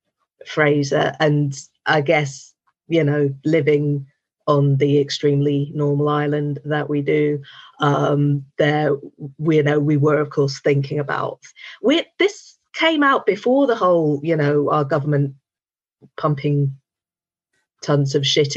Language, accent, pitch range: English, British, 145-155 Hz